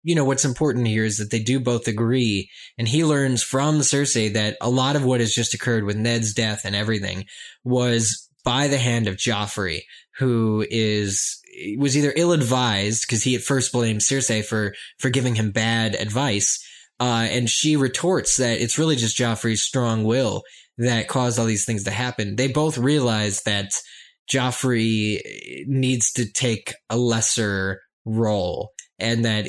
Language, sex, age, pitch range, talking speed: English, male, 20-39, 105-125 Hz, 170 wpm